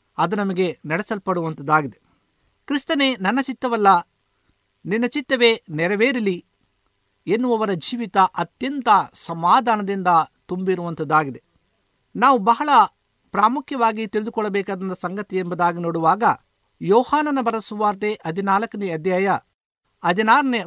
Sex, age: male, 50-69